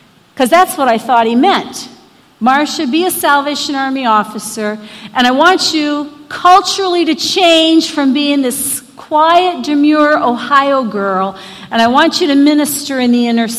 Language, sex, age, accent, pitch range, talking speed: English, female, 50-69, American, 265-355 Hz, 160 wpm